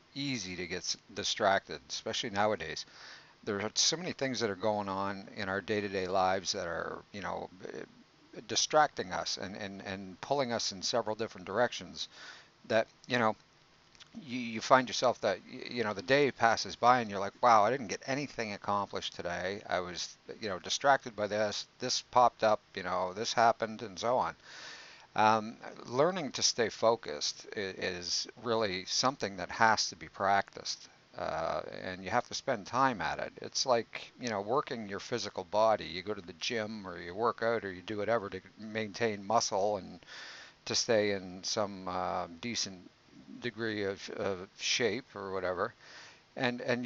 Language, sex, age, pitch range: English, male, 50-69, 95-115 Hz